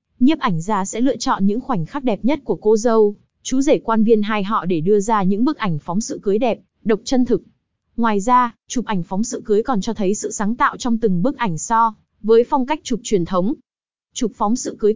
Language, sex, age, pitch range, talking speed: Vietnamese, female, 20-39, 195-245 Hz, 245 wpm